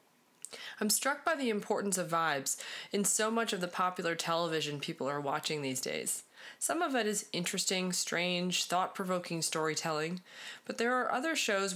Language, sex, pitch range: English, female, 155-195 Hz